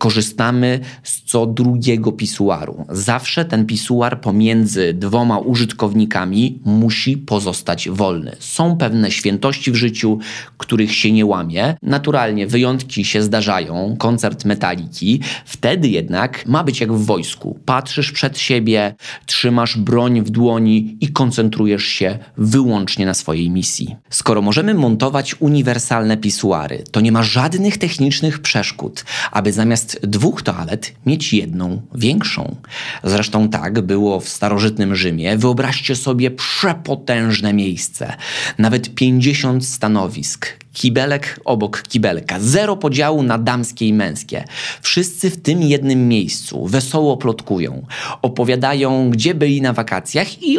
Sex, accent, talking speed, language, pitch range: male, native, 120 wpm, Polish, 105-130 Hz